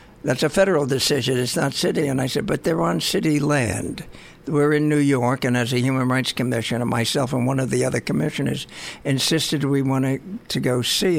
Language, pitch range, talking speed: English, 125-145 Hz, 205 wpm